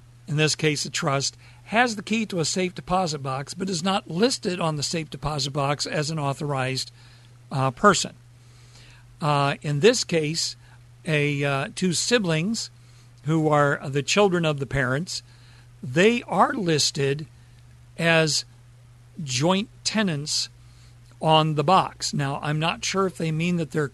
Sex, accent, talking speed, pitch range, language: male, American, 150 wpm, 125-175 Hz, English